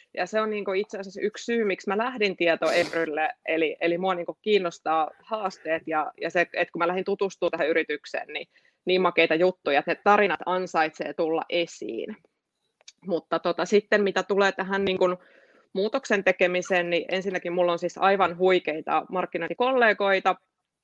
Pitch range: 165-195 Hz